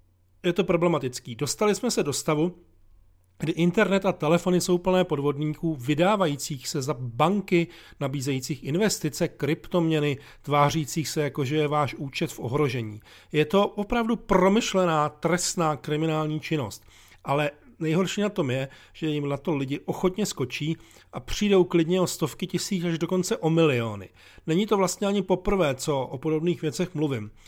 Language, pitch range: Czech, 140-180 Hz